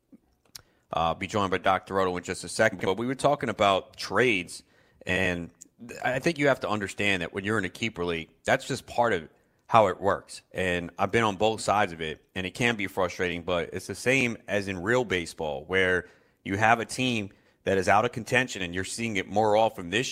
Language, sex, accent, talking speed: English, male, American, 225 wpm